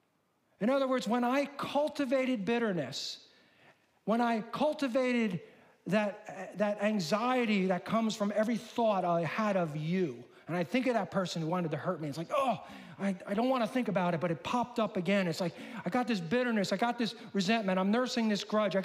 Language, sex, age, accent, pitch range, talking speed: English, male, 40-59, American, 185-250 Hz, 205 wpm